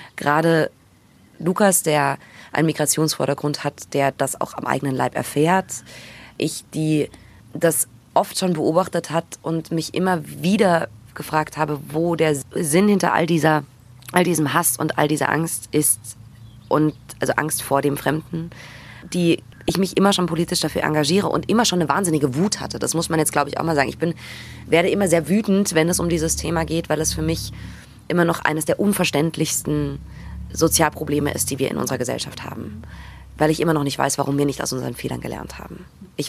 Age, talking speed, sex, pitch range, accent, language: 20-39, 190 wpm, female, 140-165 Hz, German, German